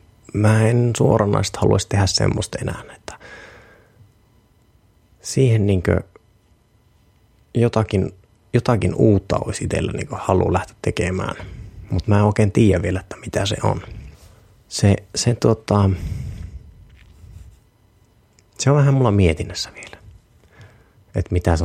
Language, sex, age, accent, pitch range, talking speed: Finnish, male, 30-49, native, 95-115 Hz, 110 wpm